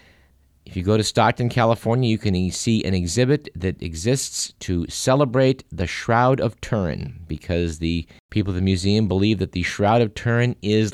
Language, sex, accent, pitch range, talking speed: English, male, American, 95-135 Hz, 175 wpm